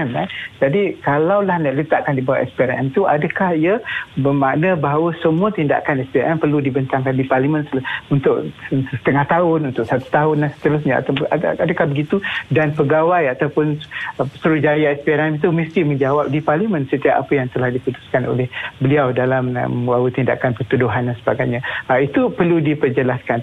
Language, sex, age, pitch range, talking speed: Malay, male, 60-79, 135-155 Hz, 160 wpm